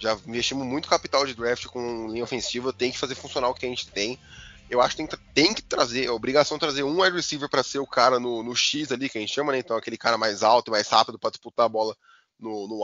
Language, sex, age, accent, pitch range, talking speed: Portuguese, male, 10-29, Brazilian, 115-140 Hz, 275 wpm